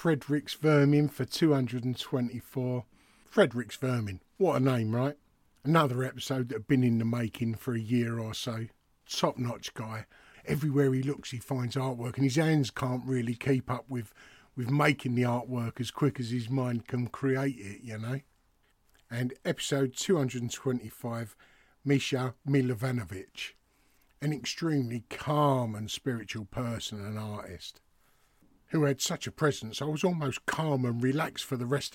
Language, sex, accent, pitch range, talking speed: English, male, British, 110-140 Hz, 150 wpm